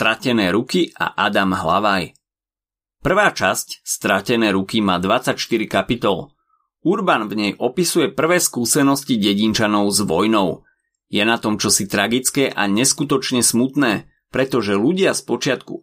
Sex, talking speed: male, 125 wpm